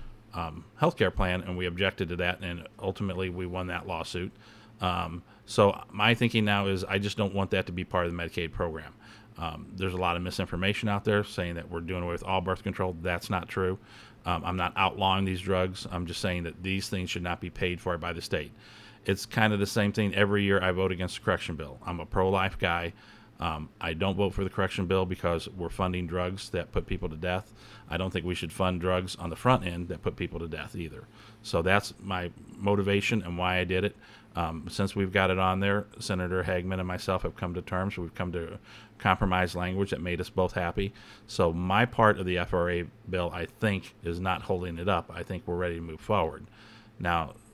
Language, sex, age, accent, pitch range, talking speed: English, male, 40-59, American, 90-105 Hz, 225 wpm